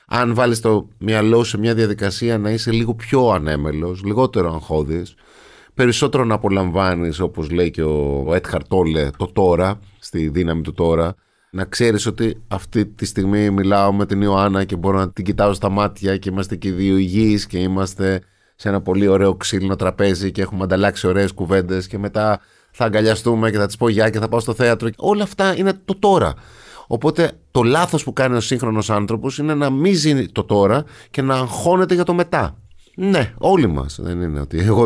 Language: Greek